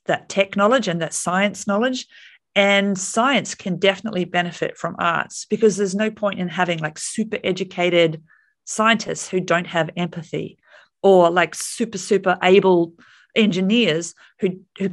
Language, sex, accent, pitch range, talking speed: English, female, Australian, 175-215 Hz, 145 wpm